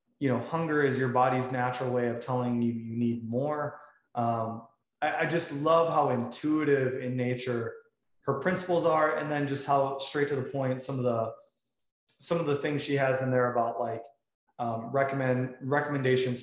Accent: American